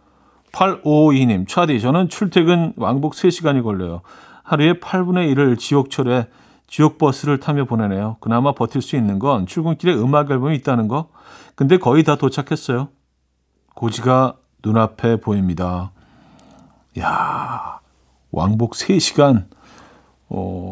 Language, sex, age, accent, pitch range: Korean, male, 40-59, native, 100-145 Hz